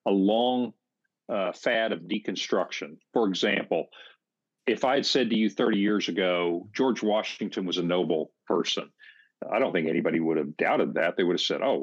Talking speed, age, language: 185 wpm, 50-69, English